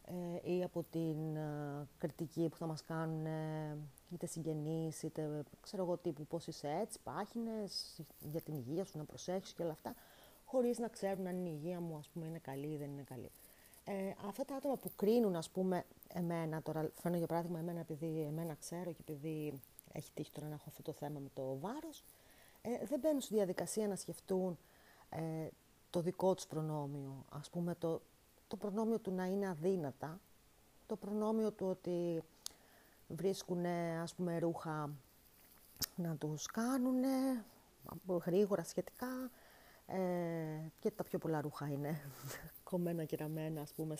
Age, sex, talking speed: 30-49, female, 150 wpm